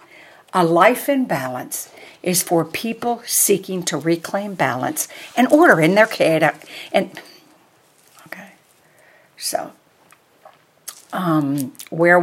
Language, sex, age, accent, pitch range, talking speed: English, female, 60-79, American, 165-240 Hz, 105 wpm